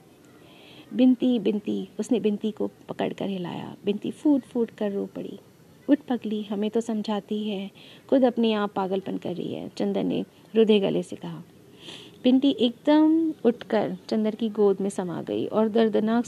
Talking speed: 160 wpm